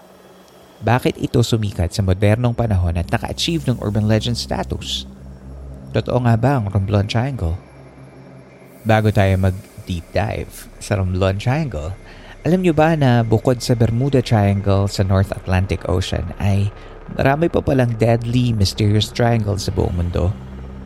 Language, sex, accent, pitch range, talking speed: Filipino, male, native, 95-115 Hz, 135 wpm